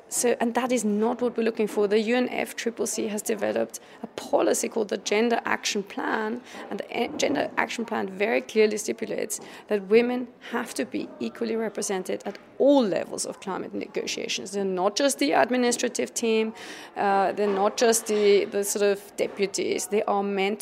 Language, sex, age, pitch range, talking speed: English, female, 30-49, 205-245 Hz, 170 wpm